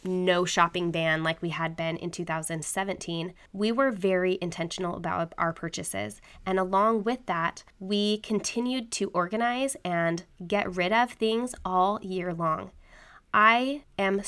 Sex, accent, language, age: female, American, English, 20-39